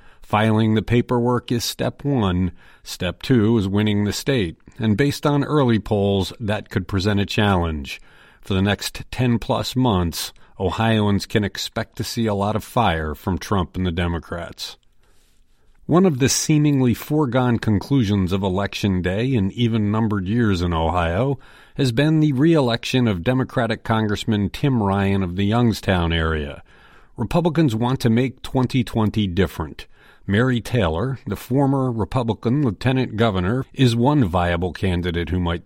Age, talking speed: 50-69, 150 wpm